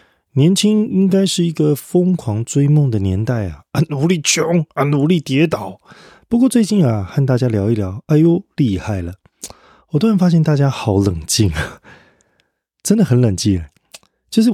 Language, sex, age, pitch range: Chinese, male, 20-39, 105-160 Hz